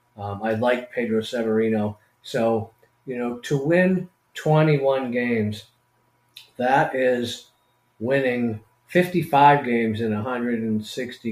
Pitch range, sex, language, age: 115-130 Hz, male, English, 40-59